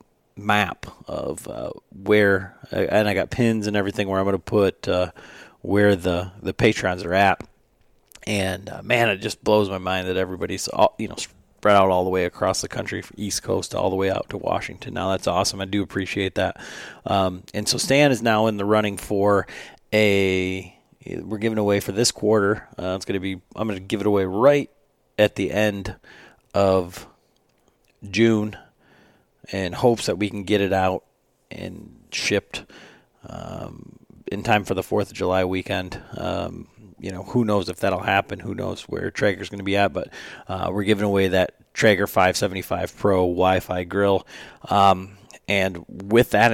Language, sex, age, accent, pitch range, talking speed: English, male, 40-59, American, 95-105 Hz, 185 wpm